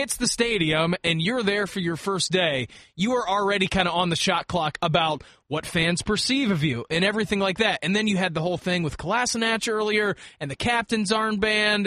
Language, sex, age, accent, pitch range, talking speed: English, male, 20-39, American, 150-200 Hz, 210 wpm